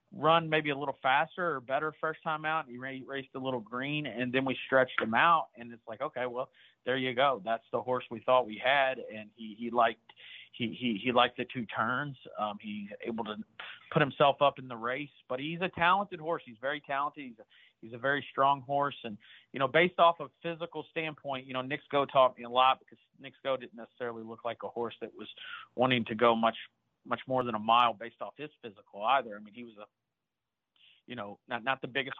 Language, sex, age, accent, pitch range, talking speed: English, male, 40-59, American, 115-135 Hz, 230 wpm